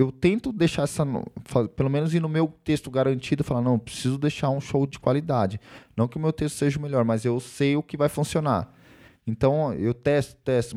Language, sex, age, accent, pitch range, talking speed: Portuguese, male, 20-39, Brazilian, 115-150 Hz, 210 wpm